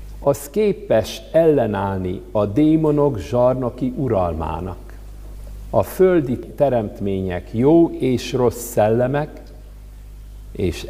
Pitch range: 100-130 Hz